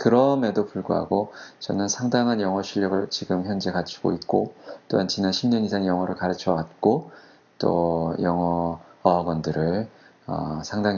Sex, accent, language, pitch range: male, native, Korean, 90-120 Hz